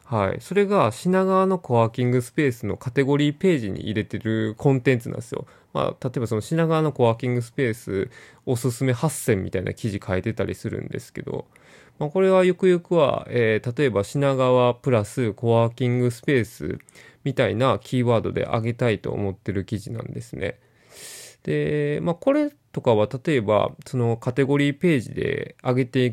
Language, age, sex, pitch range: Japanese, 20-39, male, 115-150 Hz